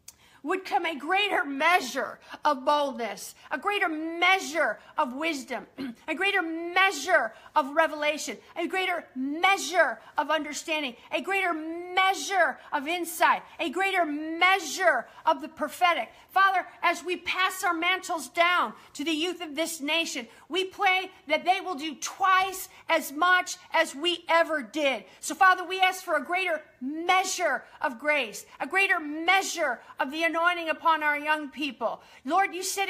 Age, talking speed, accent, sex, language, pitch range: 40-59, 150 wpm, American, female, English, 305-365 Hz